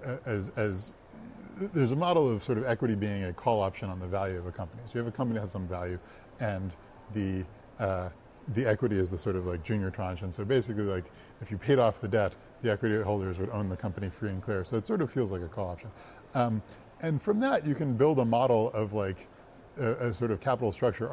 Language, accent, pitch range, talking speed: English, American, 95-125 Hz, 245 wpm